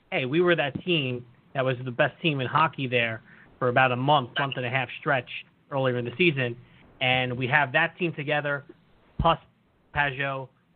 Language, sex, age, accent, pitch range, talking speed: English, male, 30-49, American, 130-170 Hz, 185 wpm